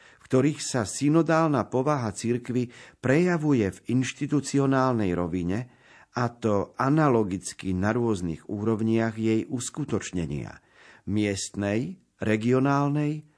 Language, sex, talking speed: Slovak, male, 90 wpm